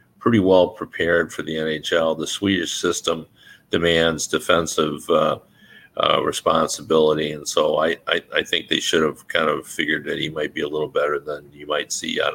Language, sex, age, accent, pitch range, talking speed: English, male, 50-69, American, 80-95 Hz, 185 wpm